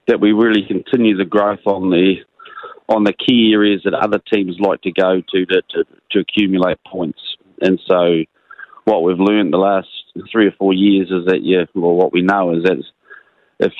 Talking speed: 195 wpm